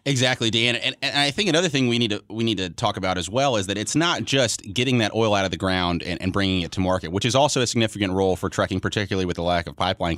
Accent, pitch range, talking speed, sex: American, 90-115 Hz, 285 wpm, male